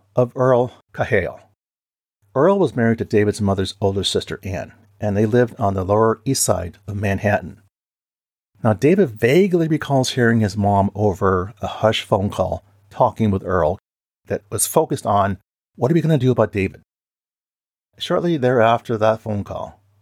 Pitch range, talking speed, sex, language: 100-120 Hz, 160 wpm, male, English